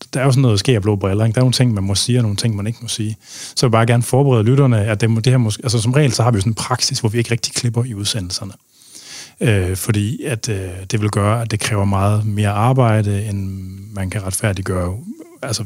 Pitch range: 100-125 Hz